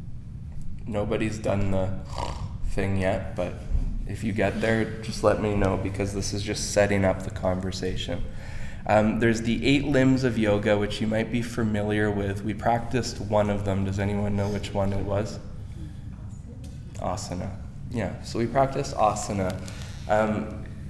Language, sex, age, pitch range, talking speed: English, male, 20-39, 100-120 Hz, 155 wpm